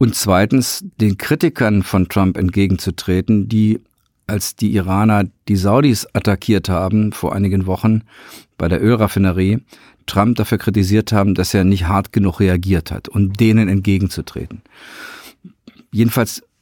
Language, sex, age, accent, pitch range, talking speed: German, male, 50-69, German, 95-110 Hz, 130 wpm